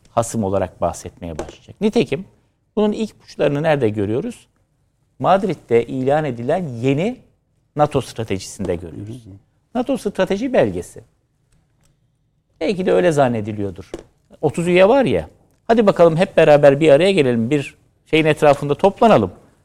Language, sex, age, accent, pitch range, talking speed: Turkish, male, 60-79, native, 110-175 Hz, 120 wpm